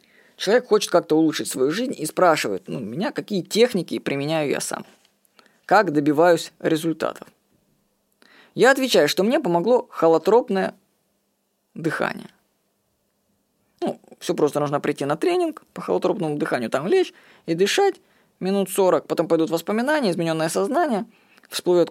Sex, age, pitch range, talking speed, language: female, 20-39, 165-230 Hz, 130 wpm, Russian